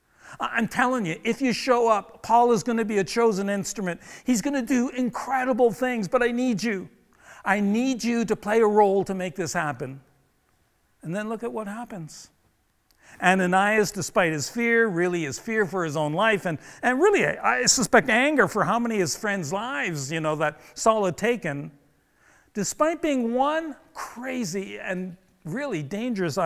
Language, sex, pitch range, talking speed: English, male, 175-235 Hz, 180 wpm